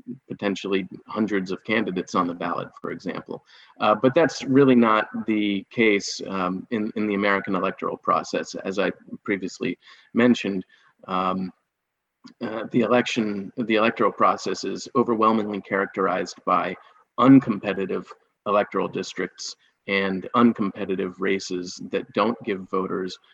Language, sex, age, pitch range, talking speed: English, male, 40-59, 95-110 Hz, 120 wpm